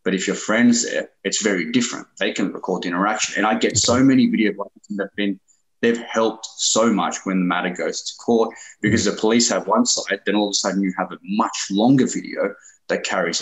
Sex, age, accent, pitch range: male, 20-39, Australian, 90-110 Hz